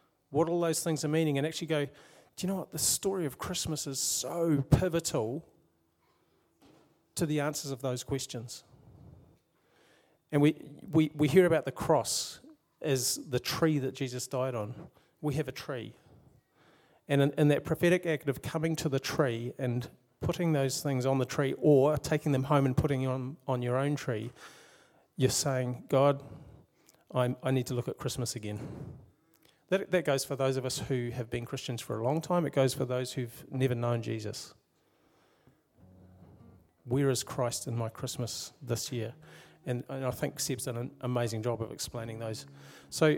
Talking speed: 175 wpm